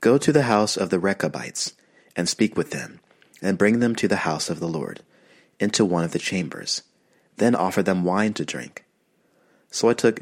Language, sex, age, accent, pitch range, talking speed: English, male, 30-49, American, 85-105 Hz, 200 wpm